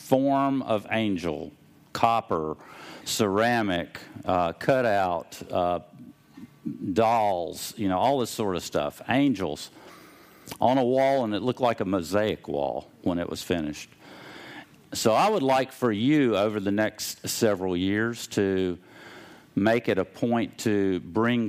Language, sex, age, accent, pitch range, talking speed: English, male, 50-69, American, 90-125 Hz, 135 wpm